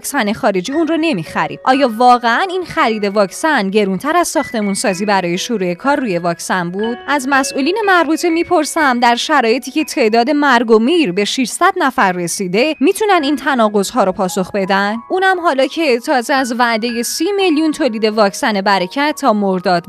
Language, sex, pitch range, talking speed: Persian, female, 215-310 Hz, 165 wpm